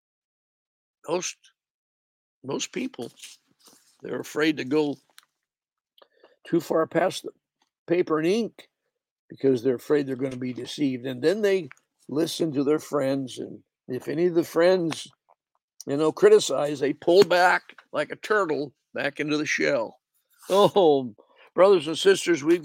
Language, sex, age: English, male, 60-79